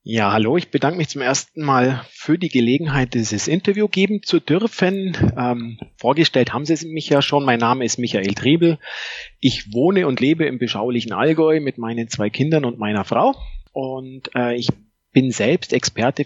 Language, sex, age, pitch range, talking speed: German, male, 40-59, 120-150 Hz, 180 wpm